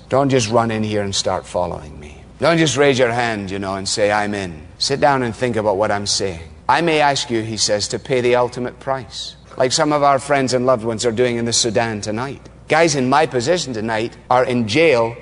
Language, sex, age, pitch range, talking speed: English, male, 30-49, 125-200 Hz, 240 wpm